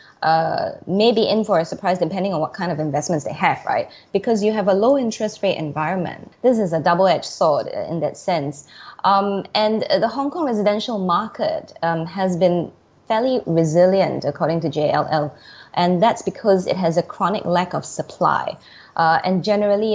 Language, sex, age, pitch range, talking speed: English, female, 20-39, 165-215 Hz, 180 wpm